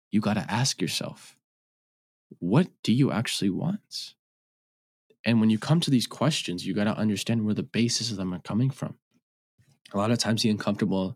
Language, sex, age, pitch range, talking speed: English, male, 20-39, 95-120 Hz, 190 wpm